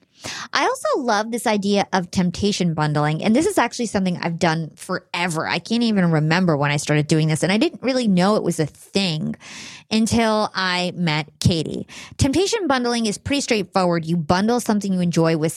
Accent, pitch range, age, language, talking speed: American, 170-230 Hz, 30-49, English, 190 wpm